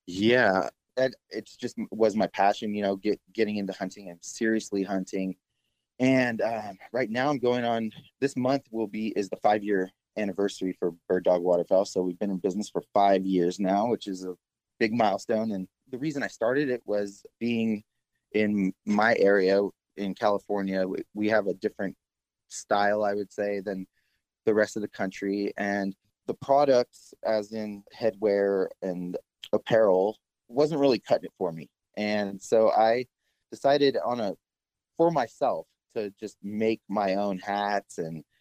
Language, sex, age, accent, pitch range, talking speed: English, male, 20-39, American, 100-125 Hz, 165 wpm